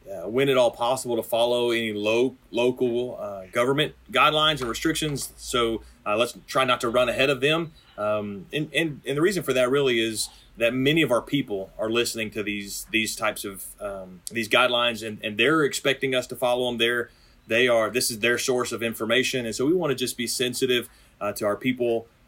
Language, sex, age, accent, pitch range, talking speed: English, male, 30-49, American, 110-130 Hz, 215 wpm